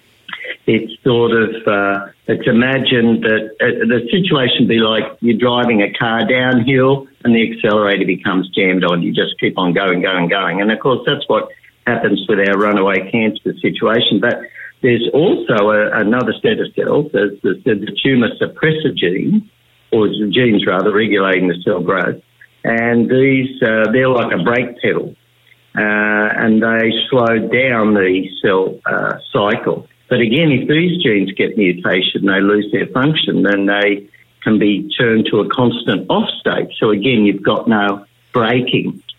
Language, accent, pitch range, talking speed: English, Australian, 105-130 Hz, 165 wpm